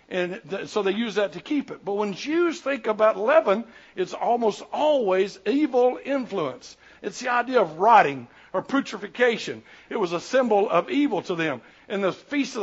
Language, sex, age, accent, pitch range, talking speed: English, male, 60-79, American, 190-245 Hz, 180 wpm